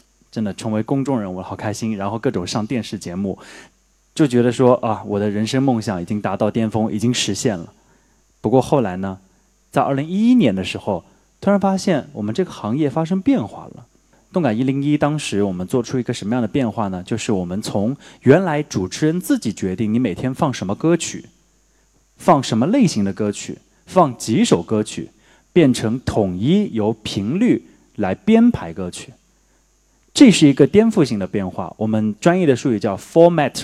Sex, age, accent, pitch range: male, 20-39, native, 110-165 Hz